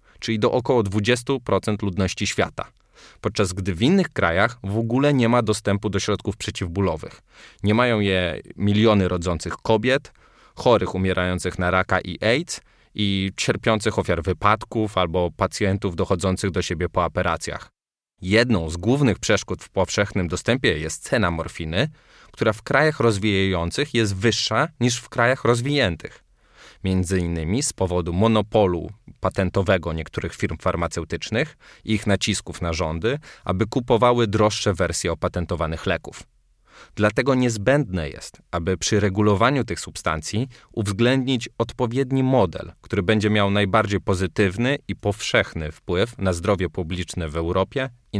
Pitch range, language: 90-115 Hz, Polish